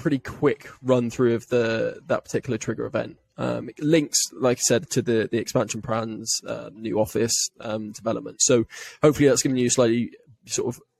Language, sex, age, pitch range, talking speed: English, male, 20-39, 115-130 Hz, 190 wpm